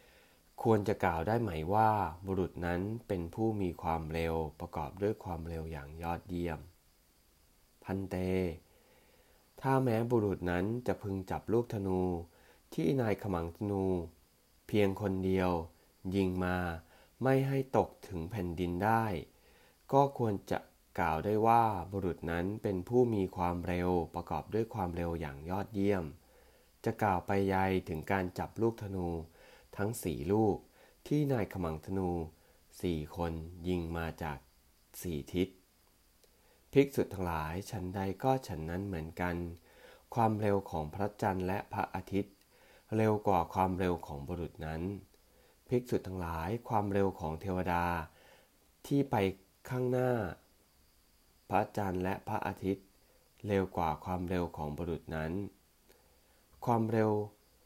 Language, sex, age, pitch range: English, male, 20-39, 85-105 Hz